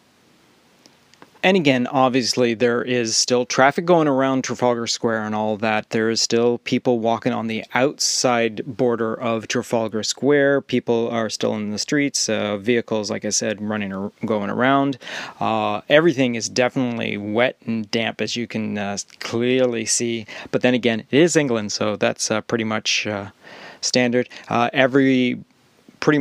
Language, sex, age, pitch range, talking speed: English, male, 30-49, 110-125 Hz, 160 wpm